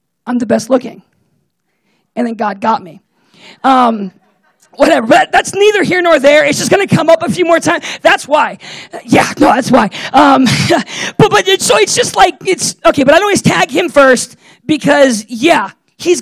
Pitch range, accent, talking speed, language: 215-295 Hz, American, 190 wpm, English